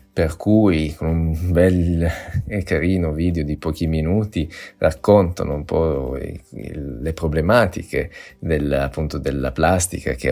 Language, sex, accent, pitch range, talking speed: Italian, male, native, 75-100 Hz, 115 wpm